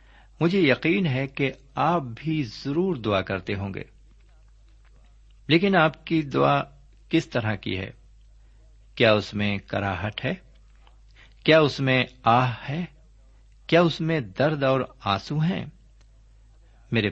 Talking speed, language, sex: 130 wpm, Urdu, male